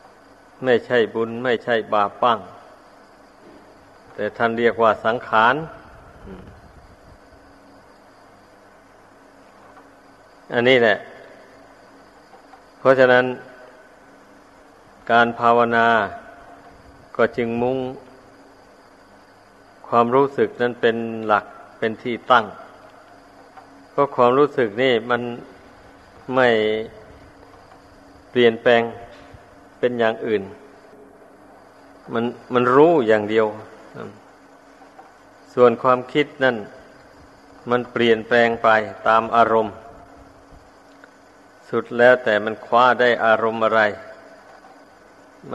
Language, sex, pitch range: Thai, male, 110-125 Hz